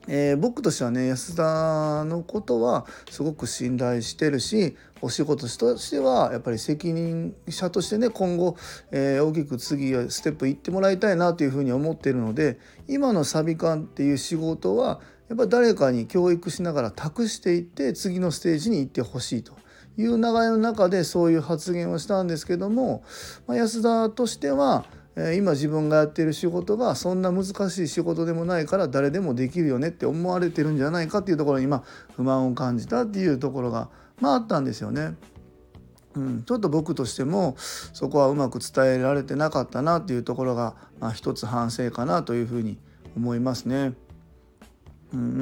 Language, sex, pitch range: Japanese, male, 125-180 Hz